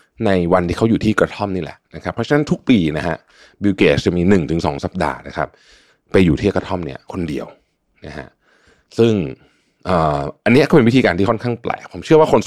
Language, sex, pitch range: Thai, male, 90-125 Hz